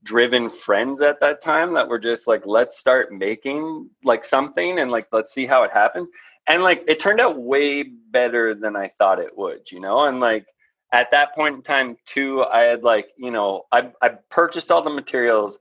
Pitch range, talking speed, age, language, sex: 105-135 Hz, 210 wpm, 20-39, English, male